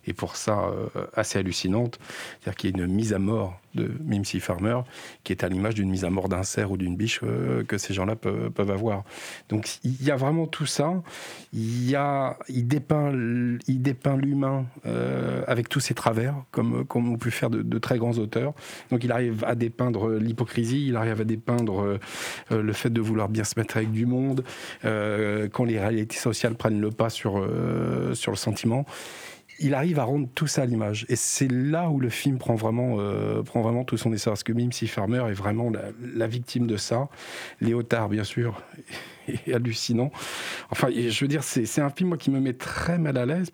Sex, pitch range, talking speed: male, 110-135 Hz, 210 wpm